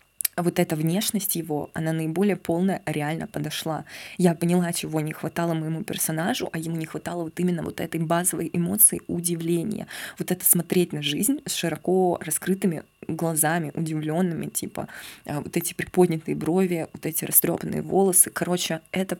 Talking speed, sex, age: 150 wpm, female, 20-39